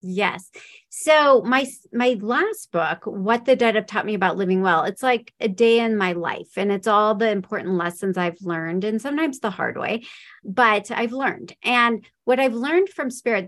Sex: female